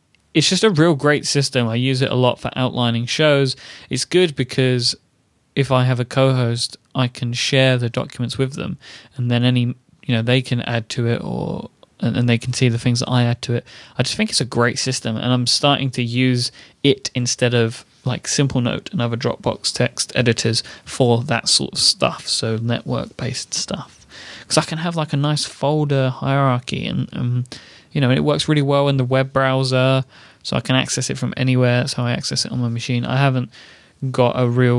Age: 20-39